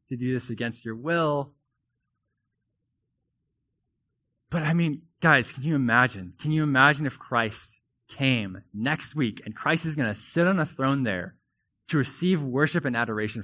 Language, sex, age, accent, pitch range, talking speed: English, male, 20-39, American, 115-140 Hz, 160 wpm